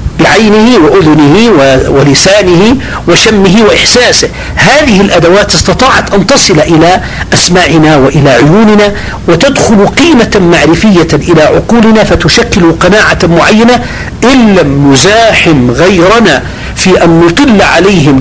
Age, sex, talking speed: 50-69, male, 90 wpm